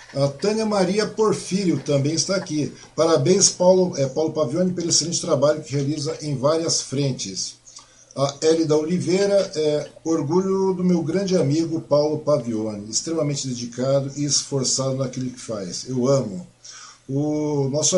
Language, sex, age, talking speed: Portuguese, male, 50-69, 140 wpm